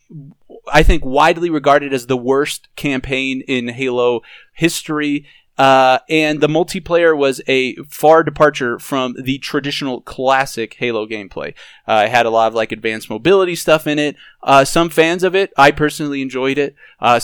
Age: 30-49